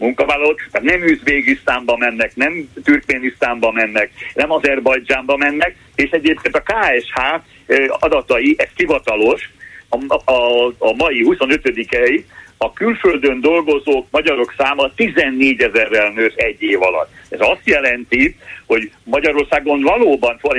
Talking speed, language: 120 wpm, Hungarian